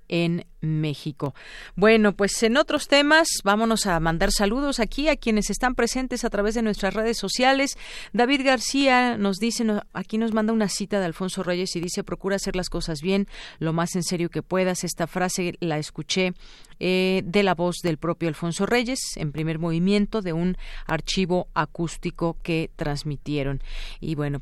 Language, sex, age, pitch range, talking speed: Spanish, female, 40-59, 165-210 Hz, 175 wpm